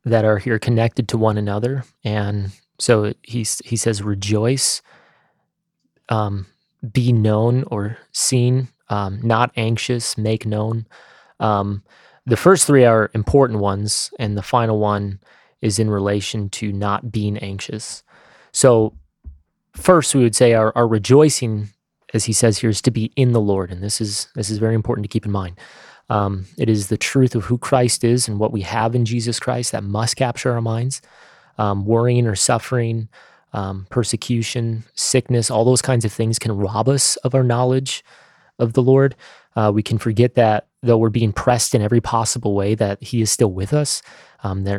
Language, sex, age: English, male, 20-39